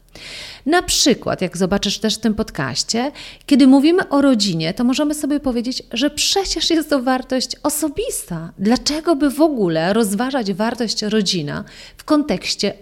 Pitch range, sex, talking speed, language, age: 185-275 Hz, female, 145 wpm, Polish, 40-59